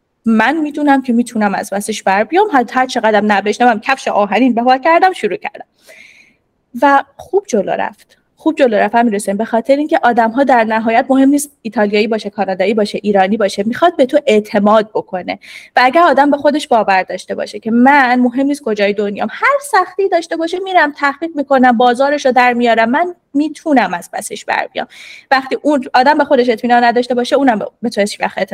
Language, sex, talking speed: Persian, female, 195 wpm